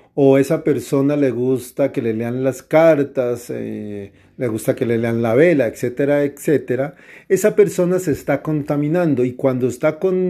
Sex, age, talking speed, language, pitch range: male, 40-59, 170 wpm, Spanish, 125-155 Hz